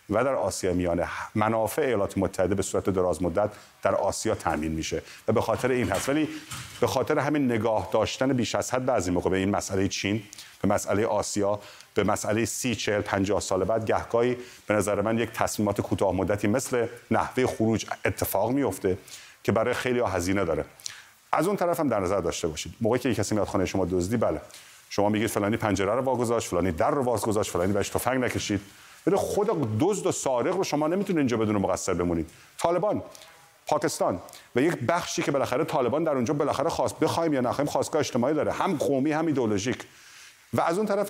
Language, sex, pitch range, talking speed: Persian, male, 100-135 Hz, 190 wpm